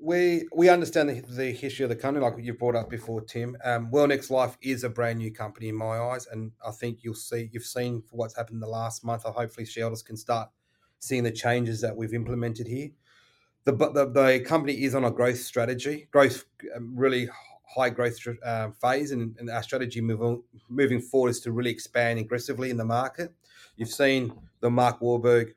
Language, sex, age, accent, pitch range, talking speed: English, male, 30-49, Australian, 115-130 Hz, 205 wpm